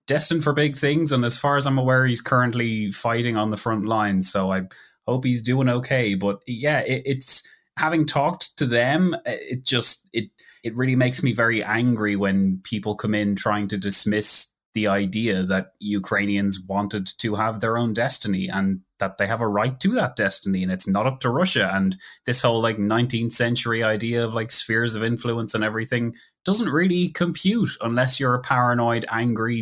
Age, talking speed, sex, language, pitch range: 20-39, 190 wpm, male, English, 105-130 Hz